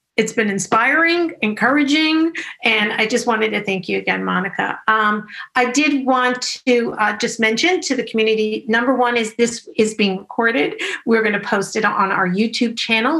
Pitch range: 200-250 Hz